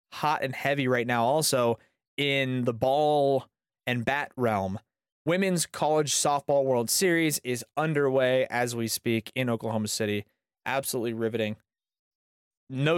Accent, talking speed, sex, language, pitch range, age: American, 130 wpm, male, English, 115-145 Hz, 20-39